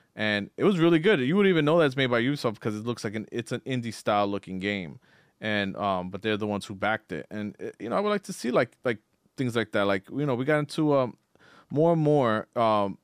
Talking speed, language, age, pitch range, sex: 270 wpm, English, 30-49, 105-135 Hz, male